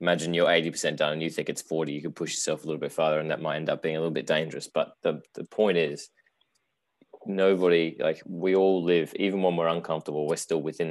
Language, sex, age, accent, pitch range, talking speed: English, male, 20-39, Australian, 80-85 Hz, 240 wpm